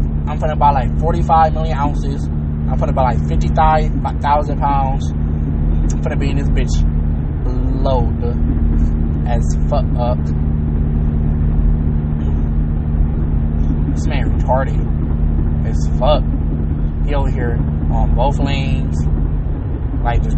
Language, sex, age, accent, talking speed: English, male, 20-39, American, 120 wpm